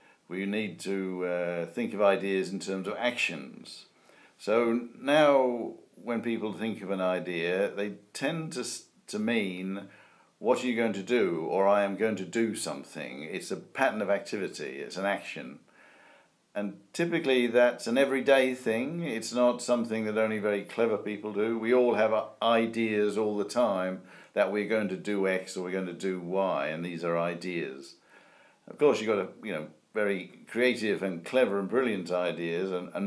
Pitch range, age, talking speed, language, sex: 95-120 Hz, 50-69, 180 wpm, English, male